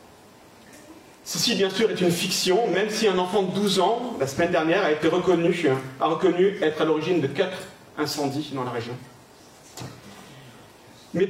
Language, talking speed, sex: French, 165 wpm, male